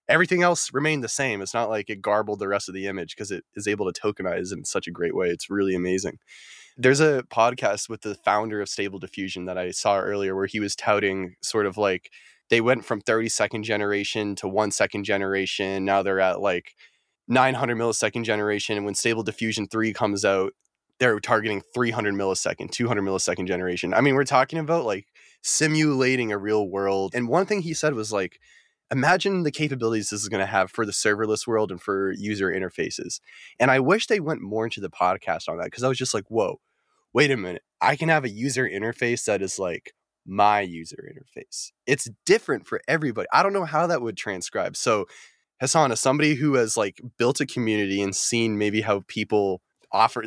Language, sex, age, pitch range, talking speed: English, male, 20-39, 100-130 Hz, 205 wpm